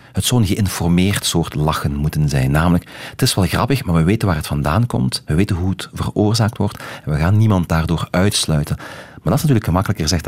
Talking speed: 220 wpm